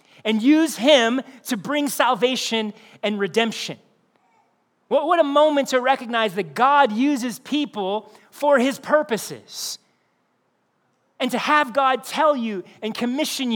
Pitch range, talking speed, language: 215-275 Hz, 125 wpm, English